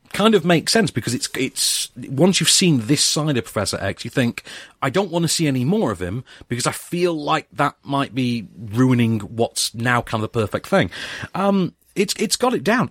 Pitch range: 110-170 Hz